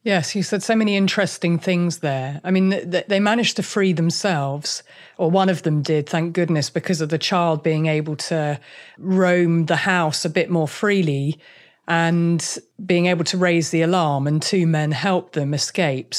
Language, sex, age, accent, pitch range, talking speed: English, female, 40-59, British, 160-190 Hz, 180 wpm